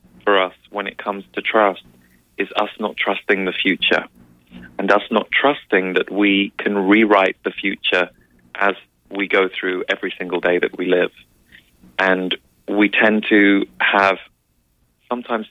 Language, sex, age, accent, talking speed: English, male, 20-39, British, 150 wpm